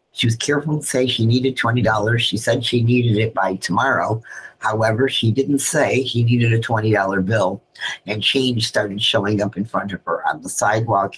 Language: English